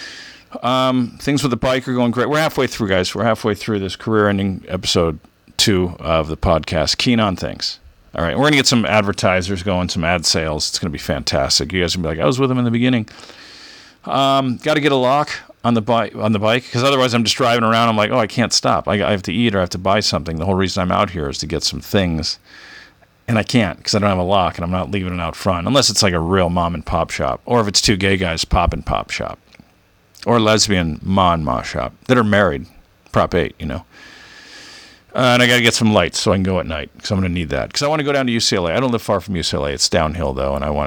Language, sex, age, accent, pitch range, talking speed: English, male, 50-69, American, 90-120 Hz, 280 wpm